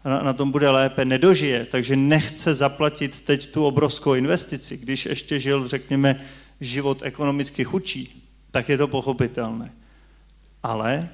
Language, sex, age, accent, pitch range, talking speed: Czech, male, 40-59, native, 130-155 Hz, 130 wpm